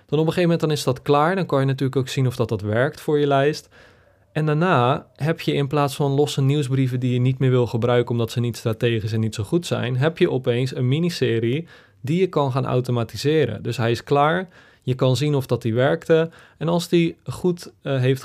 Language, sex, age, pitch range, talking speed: Dutch, male, 20-39, 120-145 Hz, 240 wpm